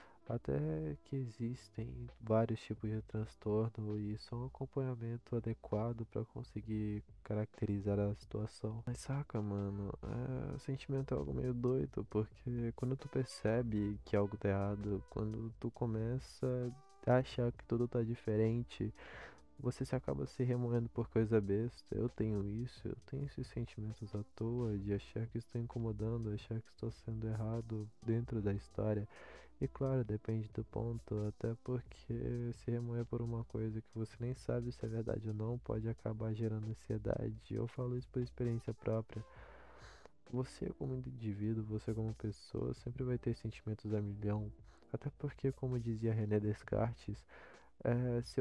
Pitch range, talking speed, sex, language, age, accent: 110-120 Hz, 155 wpm, male, Portuguese, 20-39, Brazilian